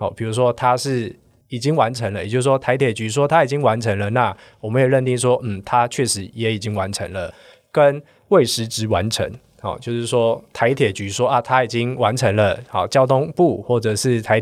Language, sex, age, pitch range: Chinese, male, 20-39, 110-135 Hz